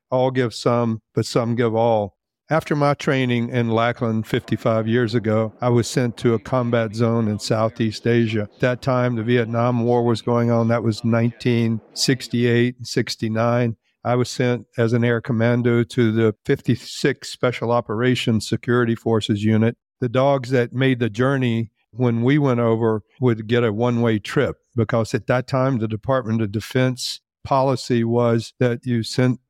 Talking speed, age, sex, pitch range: 165 wpm, 50-69, male, 115-125 Hz